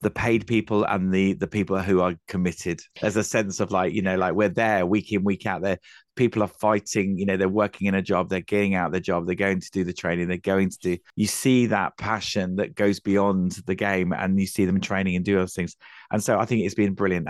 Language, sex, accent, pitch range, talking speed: English, male, British, 95-115 Hz, 265 wpm